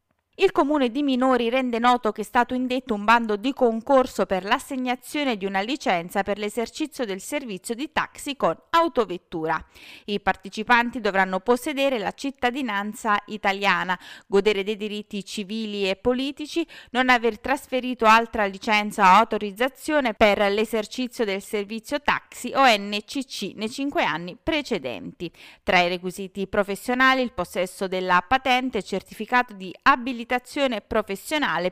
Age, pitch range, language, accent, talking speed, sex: 30-49, 195-270 Hz, Italian, native, 135 wpm, female